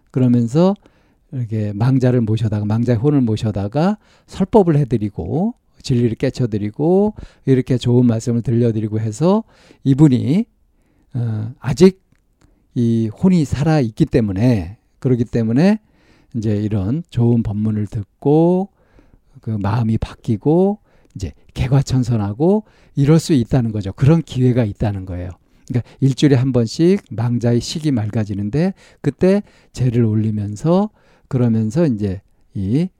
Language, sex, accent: Korean, male, native